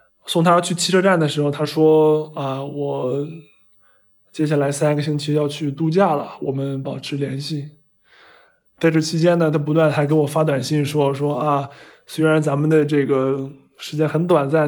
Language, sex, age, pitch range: Chinese, male, 20-39, 140-160 Hz